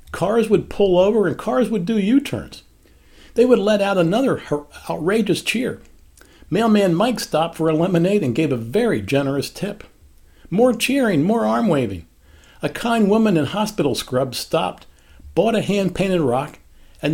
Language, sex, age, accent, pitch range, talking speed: English, male, 60-79, American, 140-210 Hz, 160 wpm